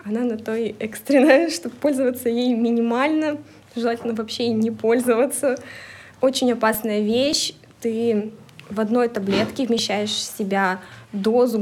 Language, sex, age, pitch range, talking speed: Russian, female, 20-39, 210-245 Hz, 120 wpm